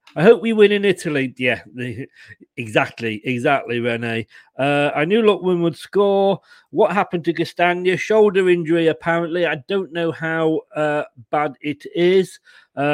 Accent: British